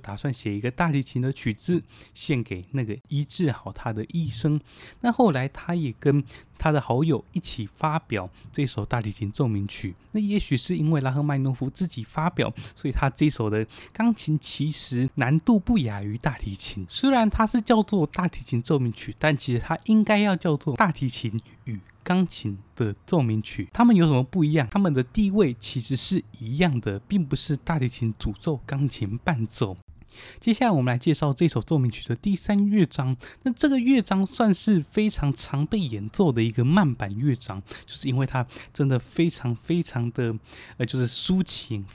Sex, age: male, 20-39